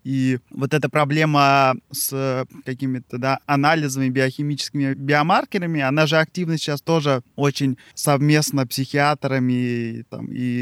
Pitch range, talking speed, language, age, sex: 130-150 Hz, 105 wpm, Russian, 20-39, male